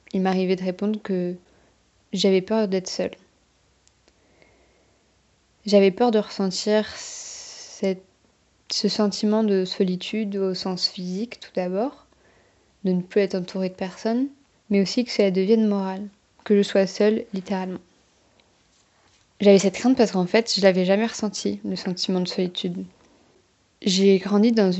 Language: French